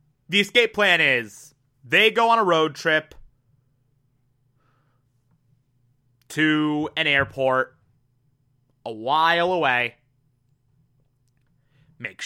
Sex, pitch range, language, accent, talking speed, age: male, 130-170 Hz, English, American, 85 wpm, 20-39